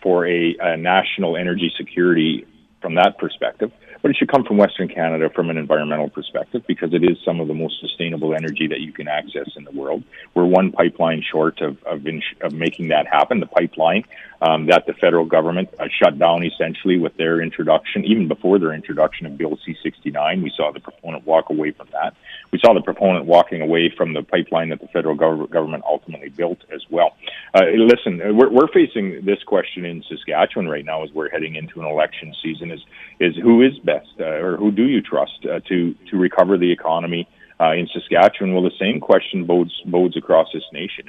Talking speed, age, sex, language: 205 wpm, 40-59, male, English